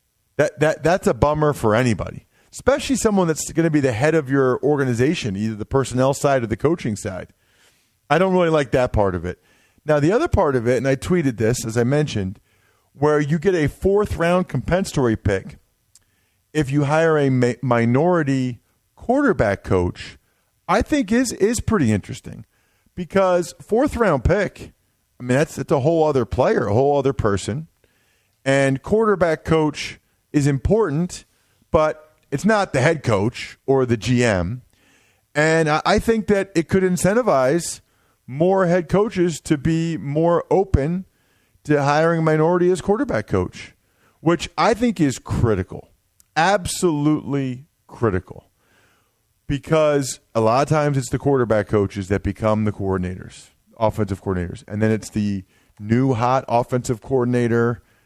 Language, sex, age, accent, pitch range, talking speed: English, male, 40-59, American, 110-160 Hz, 155 wpm